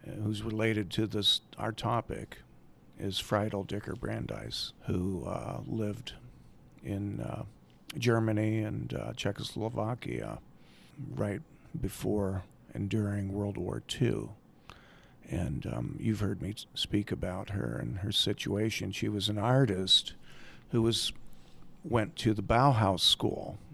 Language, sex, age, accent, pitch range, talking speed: English, male, 50-69, American, 100-115 Hz, 120 wpm